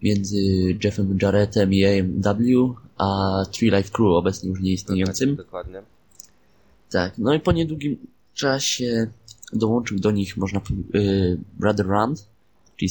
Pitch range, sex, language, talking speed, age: 100-115 Hz, male, Polish, 130 wpm, 20-39